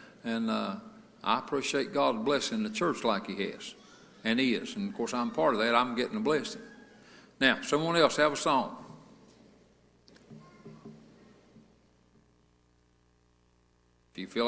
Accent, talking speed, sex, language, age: American, 140 wpm, male, English, 60-79